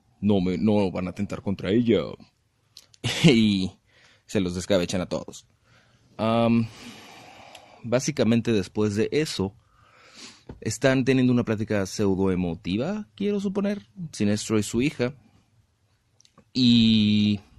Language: Spanish